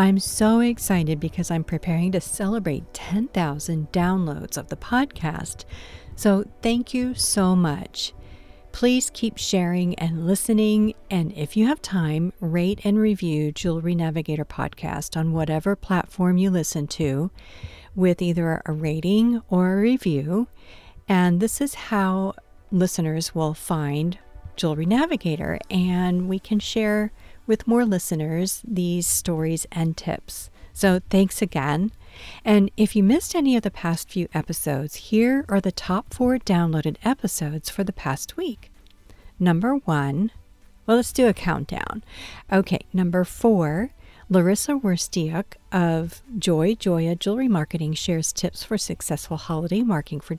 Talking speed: 135 wpm